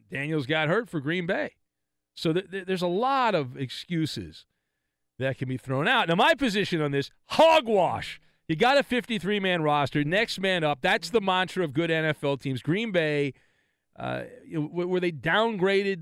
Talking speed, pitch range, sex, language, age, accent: 165 wpm, 125-180 Hz, male, English, 40-59, American